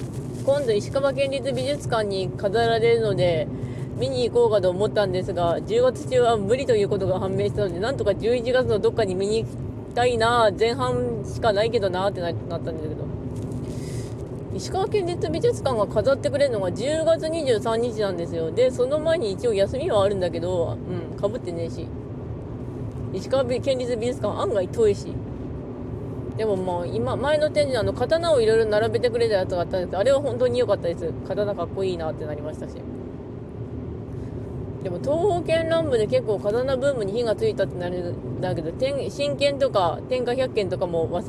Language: Japanese